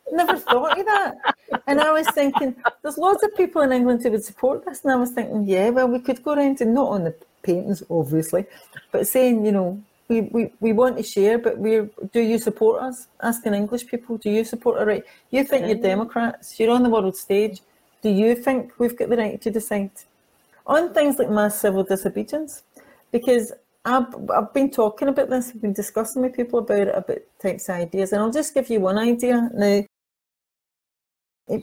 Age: 40-59